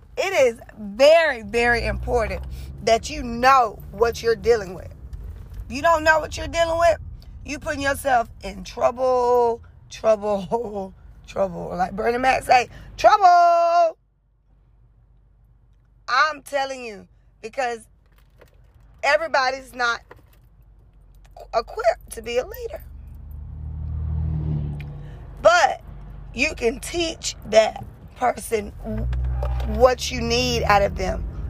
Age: 20-39